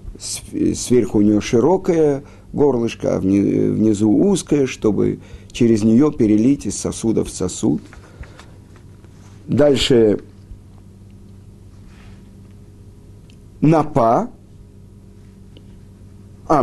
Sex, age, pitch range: male, 50-69, 100-145 Hz